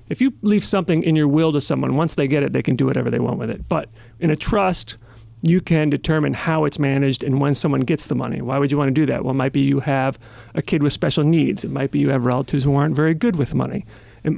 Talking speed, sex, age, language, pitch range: 285 wpm, male, 40-59, English, 125-160 Hz